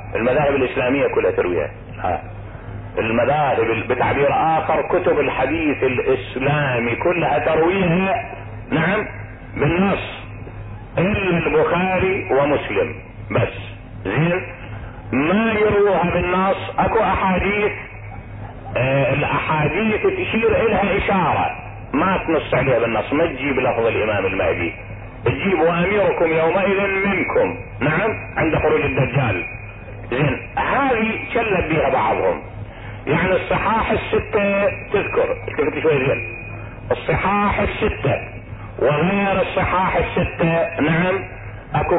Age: 50-69